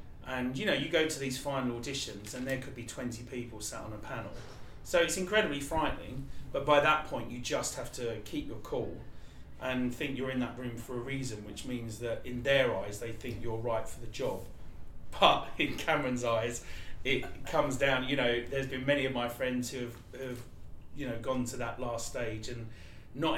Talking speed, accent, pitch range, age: 210 wpm, British, 115-135 Hz, 30-49